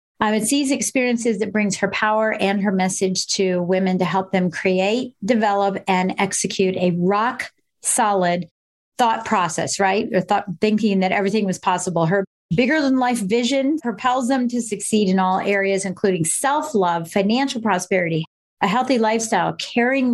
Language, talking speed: English, 150 wpm